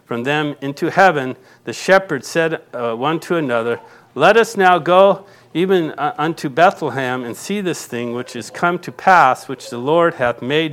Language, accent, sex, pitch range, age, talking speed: English, American, male, 125-185 Hz, 50-69, 180 wpm